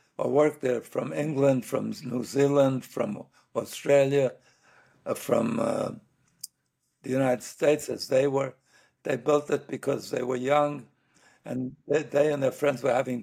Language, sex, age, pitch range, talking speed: English, male, 60-79, 130-145 Hz, 155 wpm